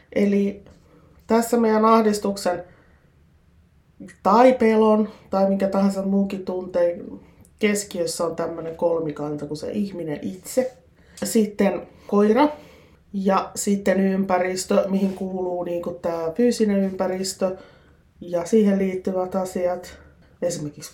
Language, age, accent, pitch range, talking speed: Finnish, 30-49, native, 175-210 Hz, 100 wpm